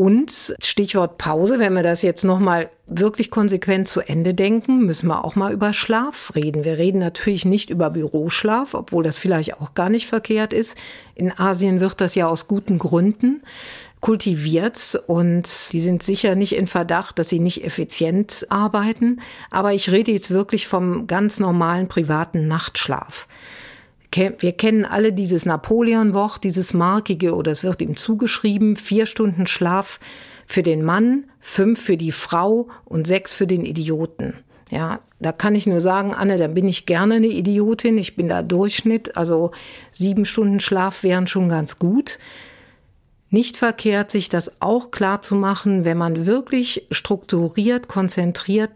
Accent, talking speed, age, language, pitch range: German, 160 wpm, 50-69, German, 175-215 Hz